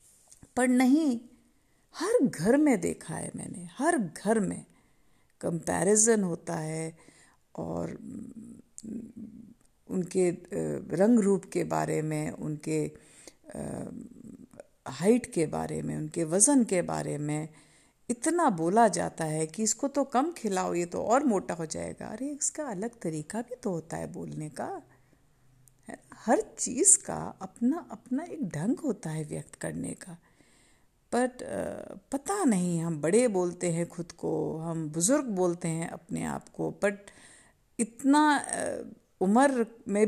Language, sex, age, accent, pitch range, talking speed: Hindi, female, 50-69, native, 170-250 Hz, 130 wpm